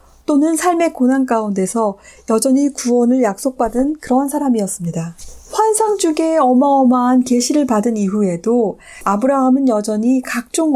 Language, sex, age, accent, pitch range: Korean, female, 40-59, native, 215-290 Hz